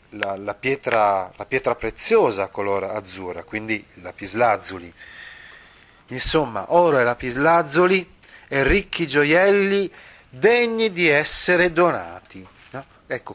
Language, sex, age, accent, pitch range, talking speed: Italian, male, 30-49, native, 105-165 Hz, 105 wpm